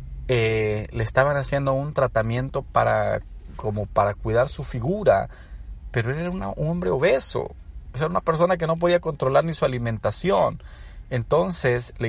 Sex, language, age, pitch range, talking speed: male, Spanish, 40-59, 115-165 Hz, 165 wpm